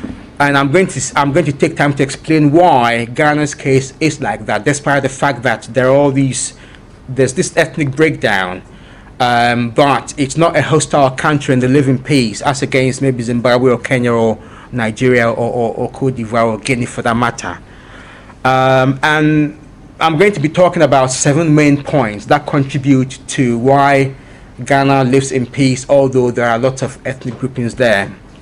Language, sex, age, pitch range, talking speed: English, male, 30-49, 125-150 Hz, 180 wpm